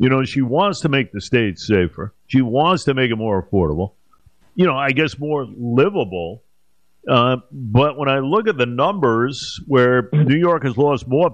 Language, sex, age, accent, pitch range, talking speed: English, male, 50-69, American, 115-160 Hz, 190 wpm